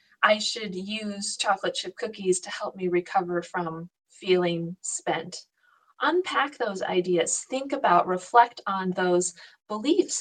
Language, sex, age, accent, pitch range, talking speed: English, female, 40-59, American, 180-240 Hz, 130 wpm